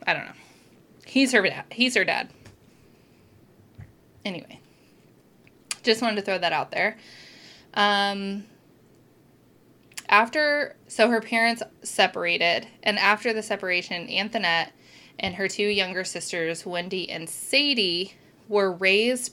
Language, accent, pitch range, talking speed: English, American, 180-220 Hz, 120 wpm